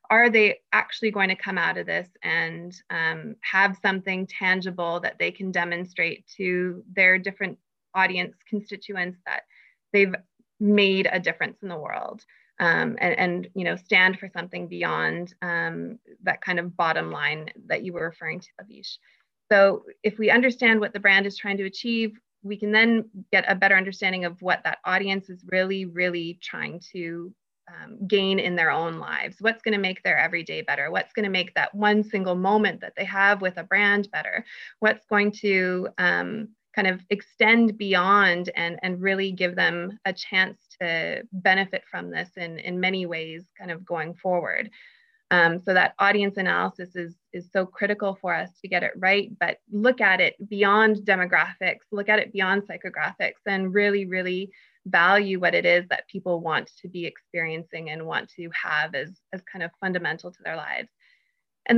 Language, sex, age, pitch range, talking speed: English, female, 20-39, 180-210 Hz, 180 wpm